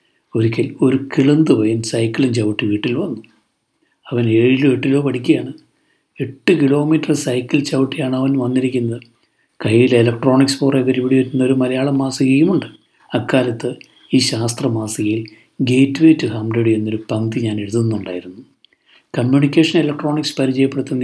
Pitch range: 115-140 Hz